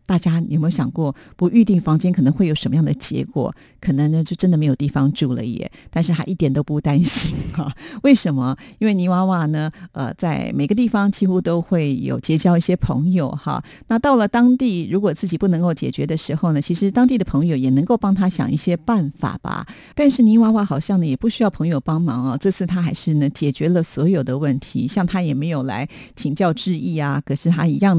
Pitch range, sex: 150-190 Hz, female